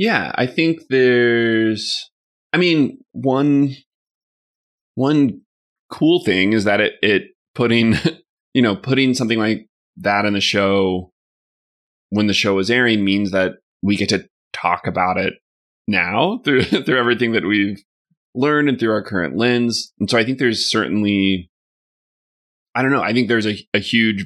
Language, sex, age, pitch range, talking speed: English, male, 30-49, 95-125 Hz, 160 wpm